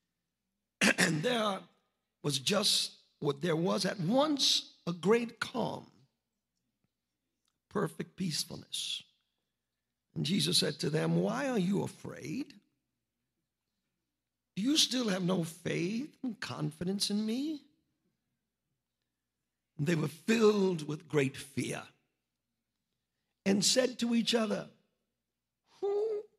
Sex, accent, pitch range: male, American, 125-205 Hz